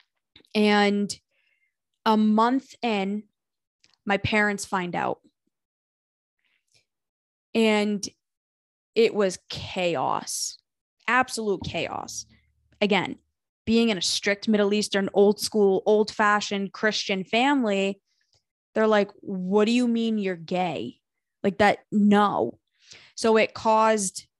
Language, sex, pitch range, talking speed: English, female, 190-220 Hz, 100 wpm